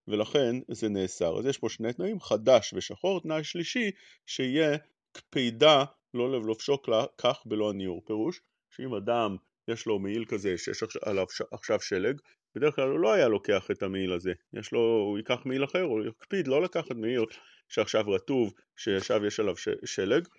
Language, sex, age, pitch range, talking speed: English, male, 30-49, 105-150 Hz, 165 wpm